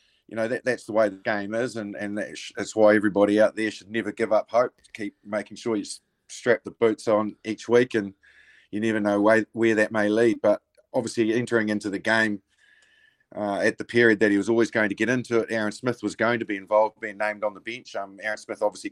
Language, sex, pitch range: English, male, 100-115 Hz